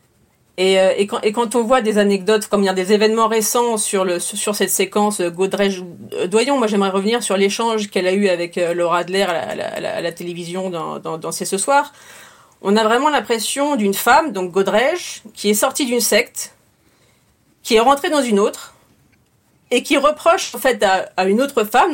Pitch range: 200-275 Hz